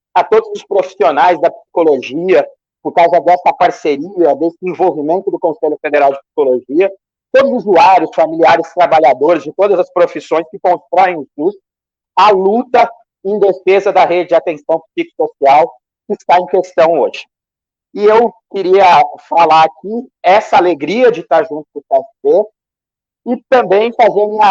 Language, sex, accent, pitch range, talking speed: Portuguese, male, Brazilian, 170-230 Hz, 150 wpm